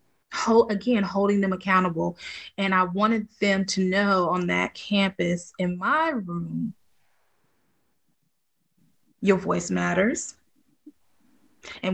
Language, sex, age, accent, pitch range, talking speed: English, female, 20-39, American, 190-255 Hz, 105 wpm